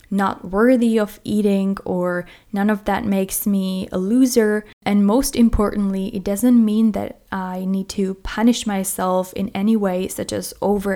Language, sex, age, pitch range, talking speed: English, female, 20-39, 195-230 Hz, 165 wpm